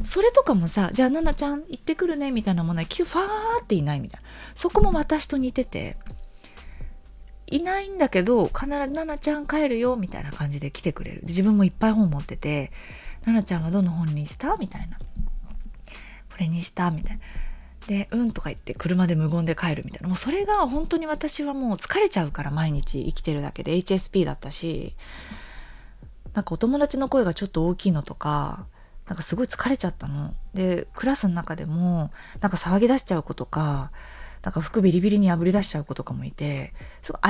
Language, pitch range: Japanese, 160-240 Hz